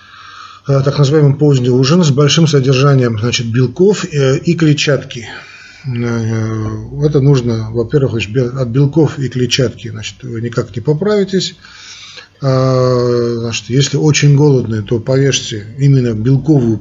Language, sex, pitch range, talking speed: Russian, male, 115-145 Hz, 105 wpm